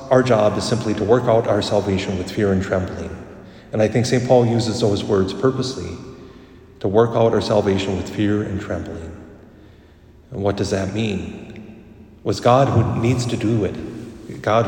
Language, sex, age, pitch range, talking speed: English, male, 40-59, 95-115 Hz, 180 wpm